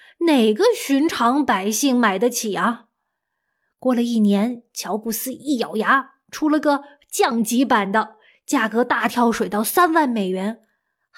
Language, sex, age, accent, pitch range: Chinese, female, 20-39, native, 220-275 Hz